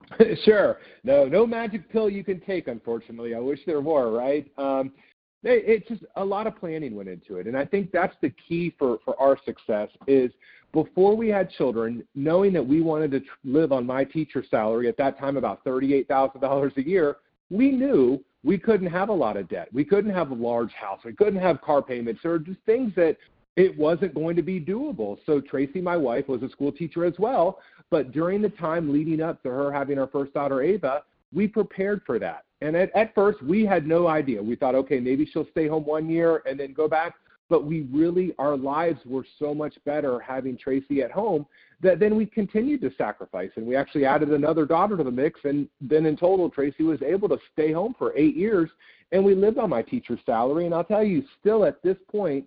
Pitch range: 135-190 Hz